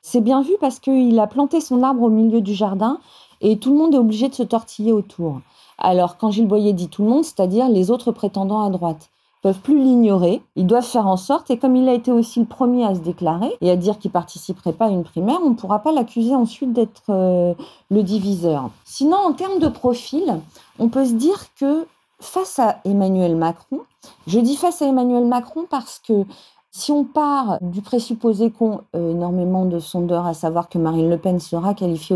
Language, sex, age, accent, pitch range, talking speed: French, female, 40-59, French, 185-255 Hz, 220 wpm